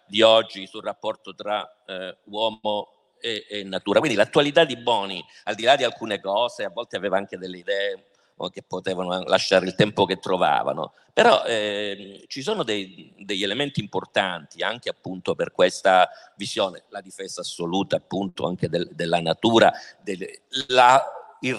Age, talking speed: 50-69, 145 wpm